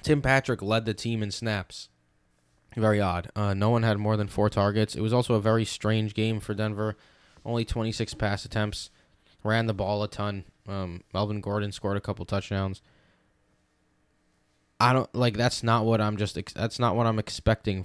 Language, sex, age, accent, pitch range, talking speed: English, male, 10-29, American, 100-115 Hz, 190 wpm